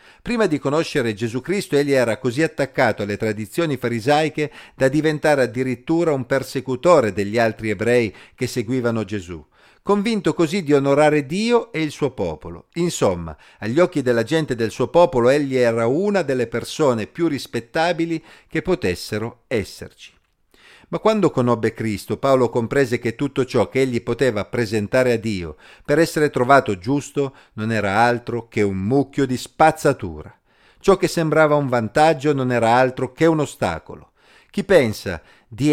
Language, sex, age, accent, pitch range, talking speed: Italian, male, 50-69, native, 115-155 Hz, 155 wpm